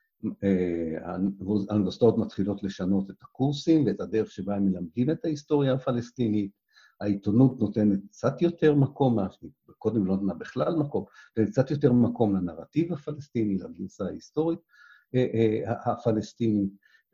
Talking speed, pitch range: 110 wpm, 100-130 Hz